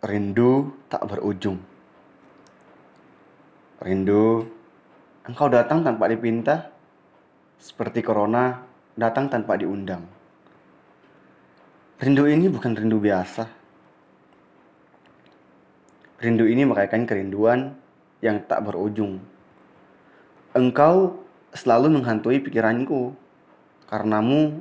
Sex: male